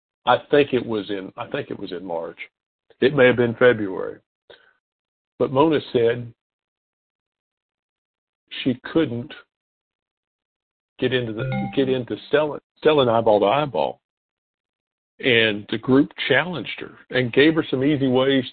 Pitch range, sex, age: 115-140 Hz, male, 50-69